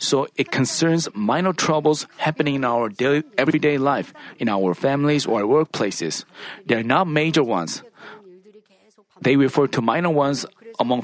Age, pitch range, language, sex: 40-59, 140-185 Hz, Korean, male